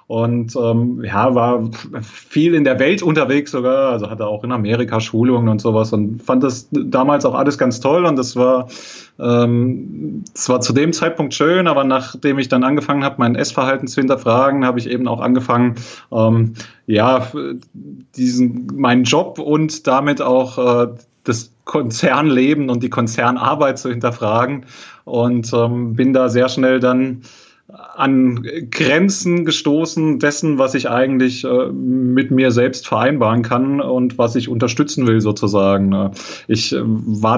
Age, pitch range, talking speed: 30-49, 115-135 Hz, 155 wpm